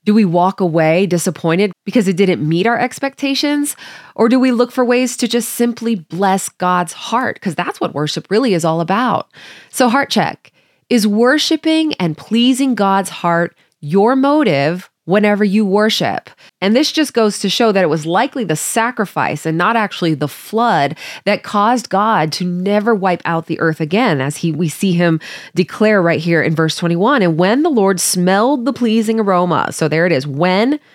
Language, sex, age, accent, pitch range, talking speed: English, female, 20-39, American, 170-230 Hz, 185 wpm